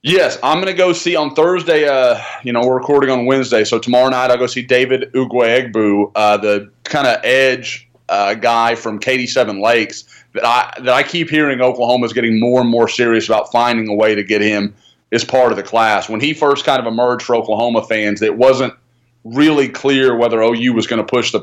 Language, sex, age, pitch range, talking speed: English, male, 30-49, 115-130 Hz, 215 wpm